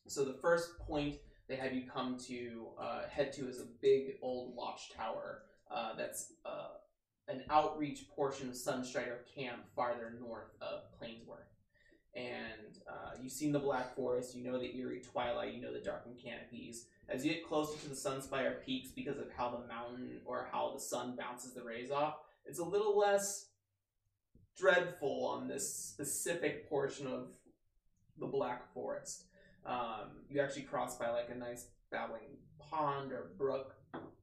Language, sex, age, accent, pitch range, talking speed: English, male, 20-39, American, 120-150 Hz, 160 wpm